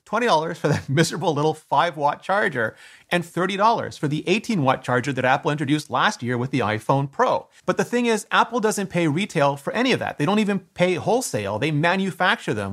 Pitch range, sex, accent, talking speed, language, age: 140-185 Hz, male, American, 205 wpm, English, 30-49